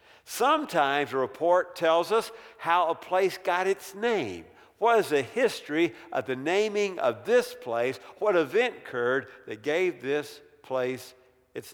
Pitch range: 130-190 Hz